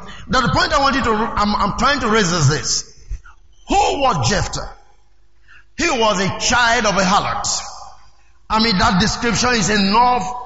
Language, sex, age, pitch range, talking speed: English, male, 50-69, 195-265 Hz, 170 wpm